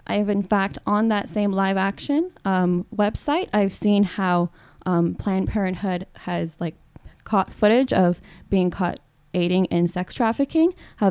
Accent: American